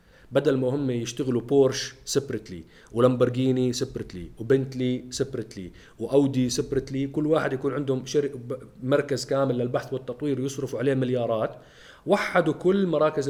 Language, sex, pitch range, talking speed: Arabic, male, 130-170 Hz, 115 wpm